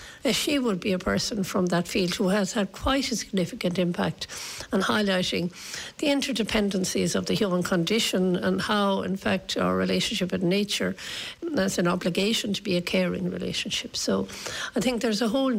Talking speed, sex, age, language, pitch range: 175 wpm, female, 60-79, English, 180-220 Hz